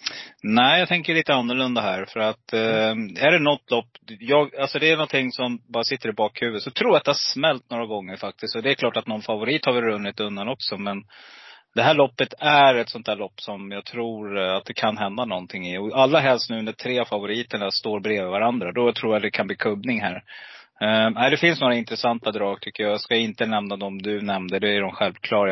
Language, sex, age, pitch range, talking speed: Swedish, male, 30-49, 105-125 Hz, 240 wpm